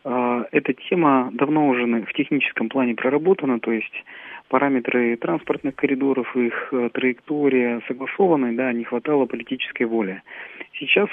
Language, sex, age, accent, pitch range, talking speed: Russian, male, 40-59, native, 115-135 Hz, 120 wpm